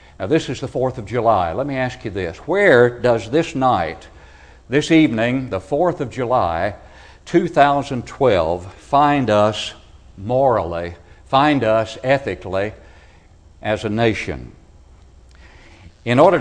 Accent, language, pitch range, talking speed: American, English, 90-135 Hz, 125 wpm